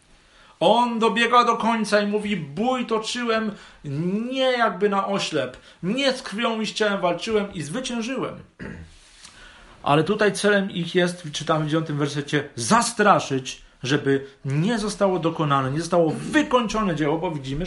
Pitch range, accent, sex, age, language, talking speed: 145-220 Hz, native, male, 40-59, Polish, 130 wpm